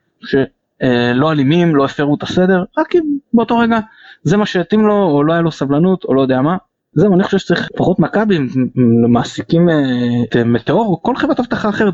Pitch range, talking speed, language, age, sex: 120-180 Hz, 185 wpm, Hebrew, 20-39, male